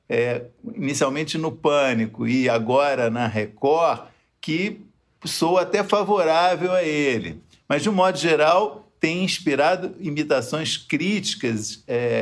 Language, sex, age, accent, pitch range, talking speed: Portuguese, male, 50-69, Brazilian, 120-155 Hz, 120 wpm